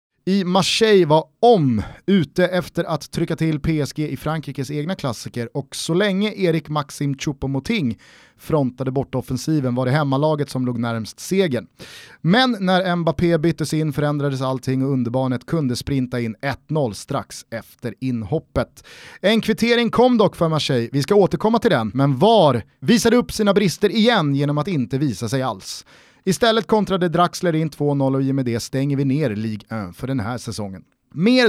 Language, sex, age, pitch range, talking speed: Swedish, male, 30-49, 135-180 Hz, 170 wpm